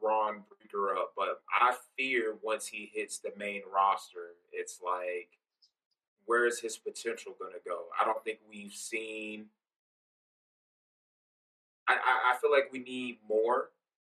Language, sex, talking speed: English, male, 145 wpm